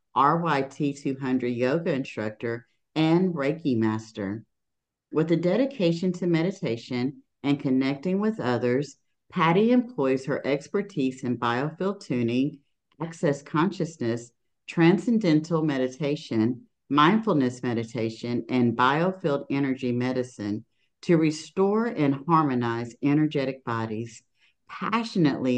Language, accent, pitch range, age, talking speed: English, American, 125-160 Hz, 50-69, 90 wpm